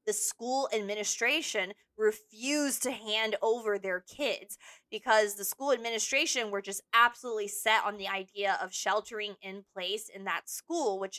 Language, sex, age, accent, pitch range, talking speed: English, female, 20-39, American, 190-235 Hz, 150 wpm